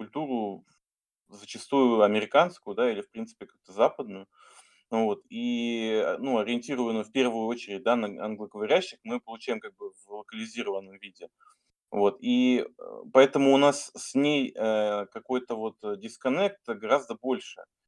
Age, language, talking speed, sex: 20-39, Russian, 135 wpm, male